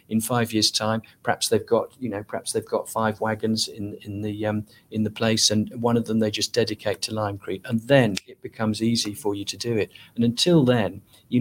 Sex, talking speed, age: male, 230 wpm, 40-59